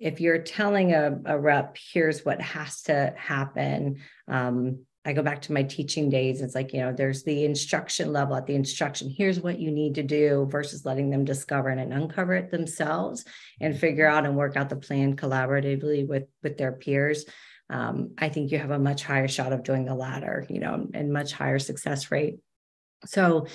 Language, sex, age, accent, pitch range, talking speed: English, female, 30-49, American, 135-165 Hz, 200 wpm